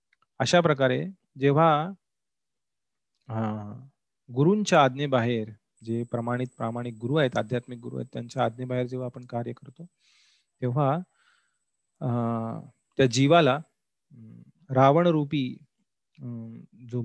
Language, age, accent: Marathi, 30-49, native